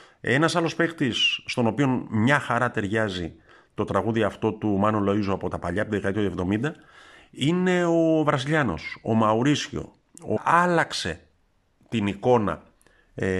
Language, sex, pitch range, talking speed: Greek, male, 100-125 Hz, 130 wpm